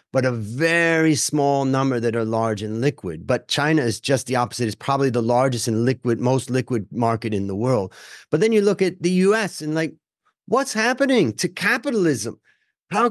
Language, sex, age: English, male, 30-49